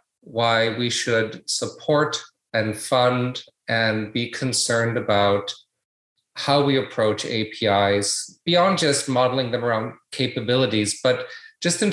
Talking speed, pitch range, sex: 115 wpm, 115-150 Hz, male